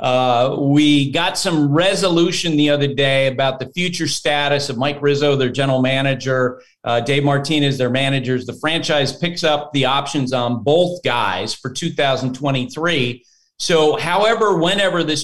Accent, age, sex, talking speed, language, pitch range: American, 40-59, male, 150 wpm, English, 140-190 Hz